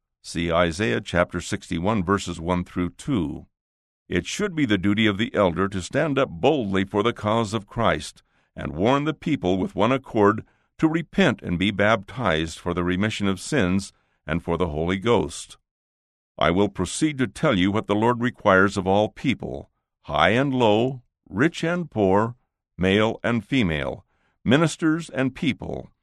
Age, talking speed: 60-79, 165 wpm